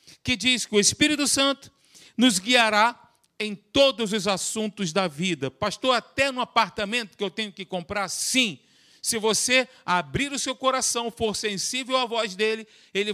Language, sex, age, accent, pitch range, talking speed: Portuguese, male, 50-69, Brazilian, 185-250 Hz, 165 wpm